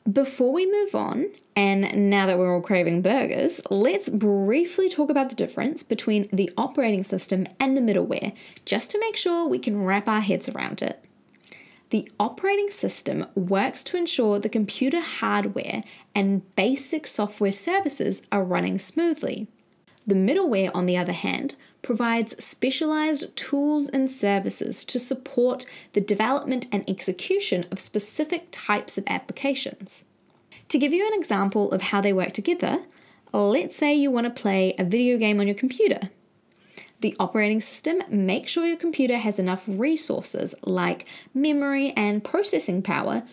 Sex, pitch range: female, 200-290 Hz